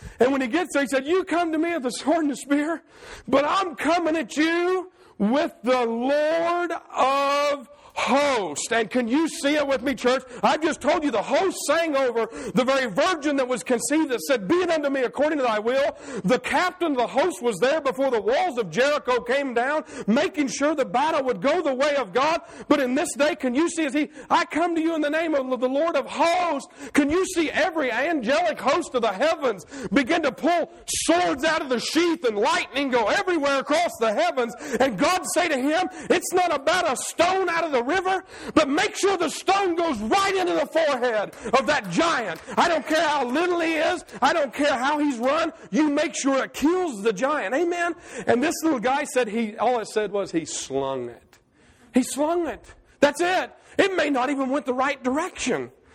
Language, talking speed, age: English, 215 wpm, 50-69